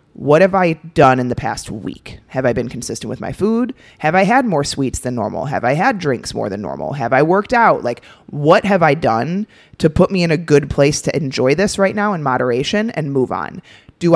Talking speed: 235 wpm